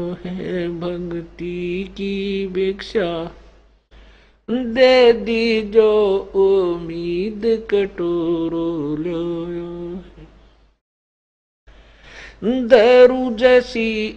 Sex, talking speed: male, 45 wpm